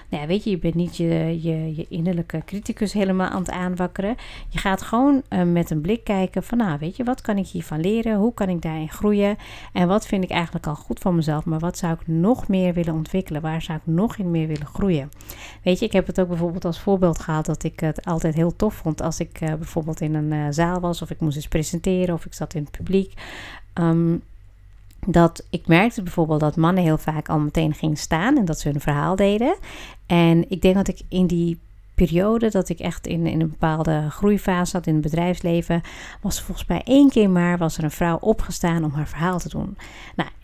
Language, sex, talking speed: Dutch, female, 230 wpm